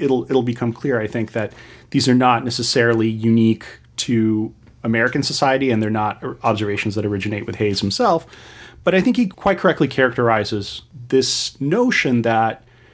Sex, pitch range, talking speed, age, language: male, 110-135 Hz, 160 wpm, 30-49, English